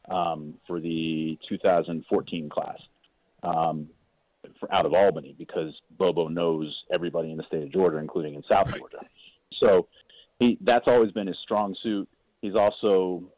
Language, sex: English, male